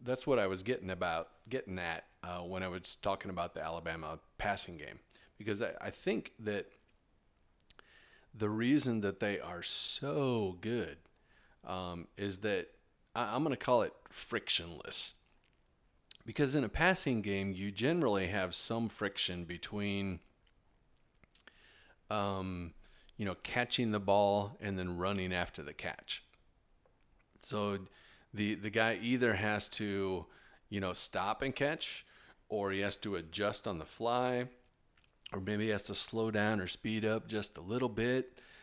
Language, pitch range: English, 95-115 Hz